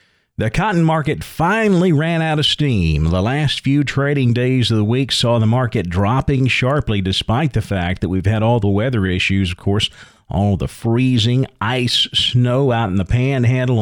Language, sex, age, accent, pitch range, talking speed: English, male, 40-59, American, 105-135 Hz, 180 wpm